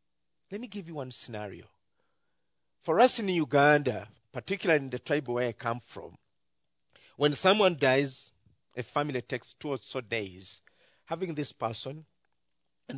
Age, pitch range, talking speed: 50-69, 115-165 Hz, 150 wpm